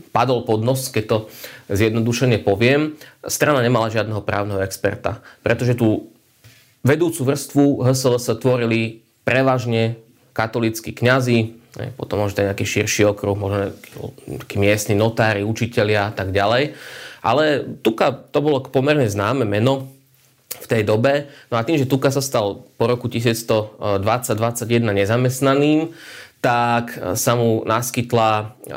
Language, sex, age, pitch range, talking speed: Slovak, male, 20-39, 105-125 Hz, 125 wpm